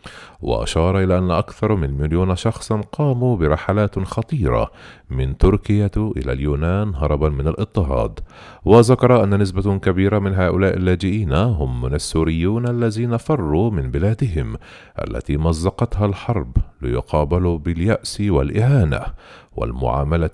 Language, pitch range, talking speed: Arabic, 75-105 Hz, 110 wpm